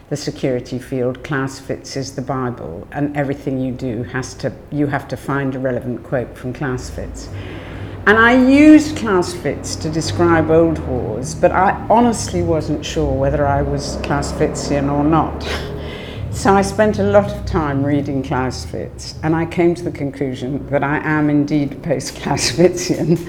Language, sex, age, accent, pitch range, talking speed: English, female, 60-79, British, 130-160 Hz, 175 wpm